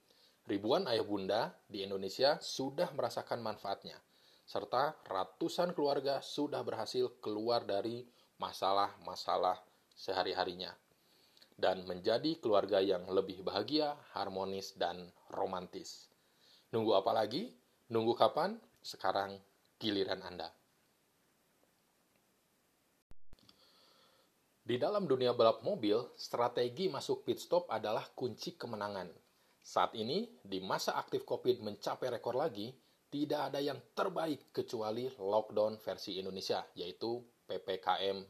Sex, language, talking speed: male, Malay, 100 wpm